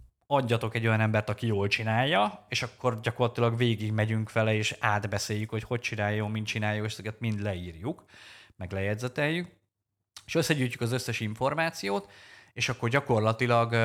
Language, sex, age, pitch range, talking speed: Hungarian, male, 20-39, 105-130 Hz, 145 wpm